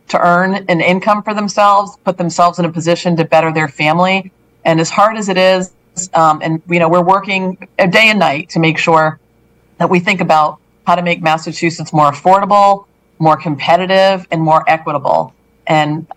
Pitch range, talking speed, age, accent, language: 160-185 Hz, 180 wpm, 40-59, American, English